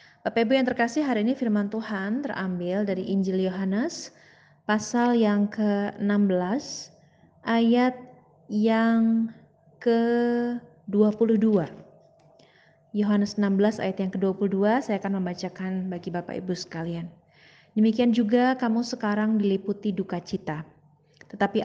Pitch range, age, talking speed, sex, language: 185-230 Hz, 20-39, 100 wpm, female, Indonesian